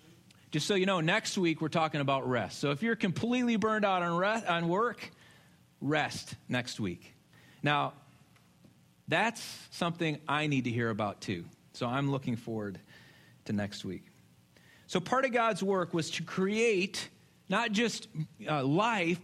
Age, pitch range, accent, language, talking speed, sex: 40-59, 135-205 Hz, American, English, 160 wpm, male